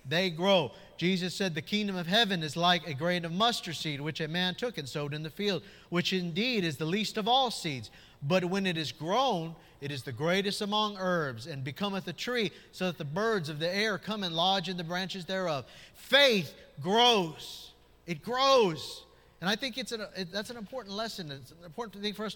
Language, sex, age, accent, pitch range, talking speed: English, male, 50-69, American, 155-210 Hz, 215 wpm